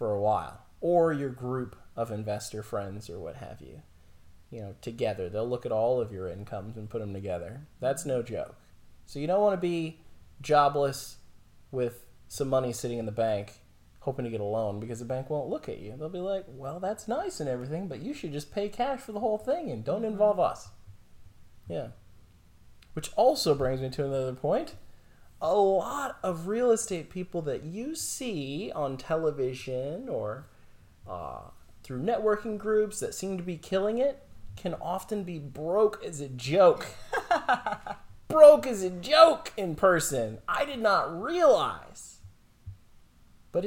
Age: 20-39